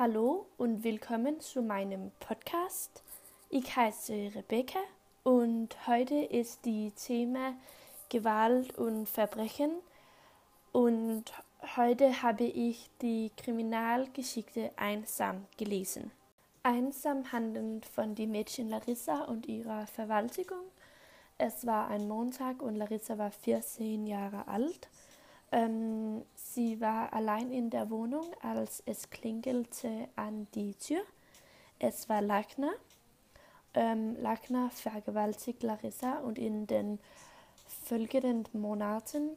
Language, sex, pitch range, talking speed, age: Dutch, female, 215-255 Hz, 105 wpm, 20-39